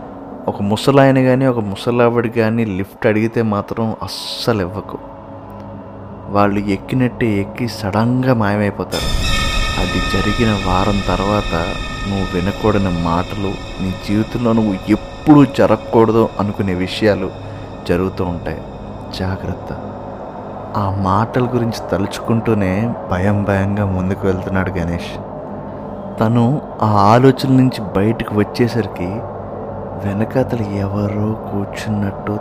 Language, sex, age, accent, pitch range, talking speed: Telugu, male, 20-39, native, 95-110 Hz, 95 wpm